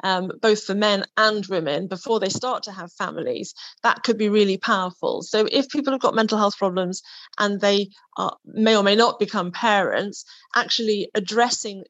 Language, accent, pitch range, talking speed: English, British, 190-225 Hz, 175 wpm